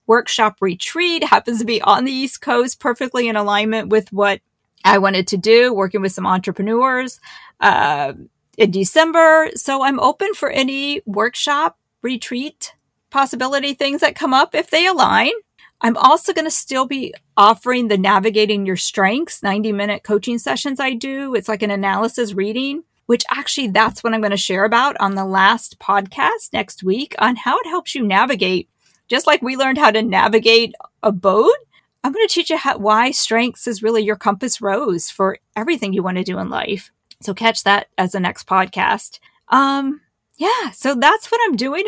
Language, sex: English, female